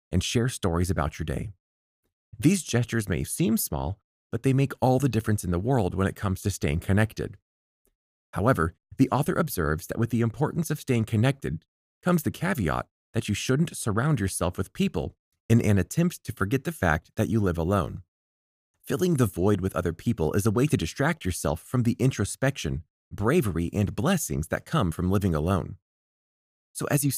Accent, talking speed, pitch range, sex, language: American, 185 wpm, 90-135 Hz, male, English